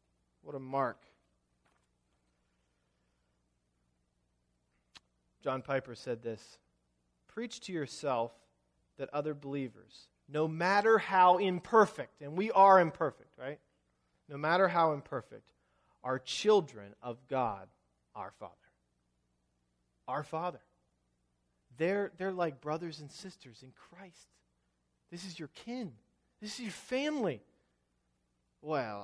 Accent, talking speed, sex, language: American, 105 wpm, male, English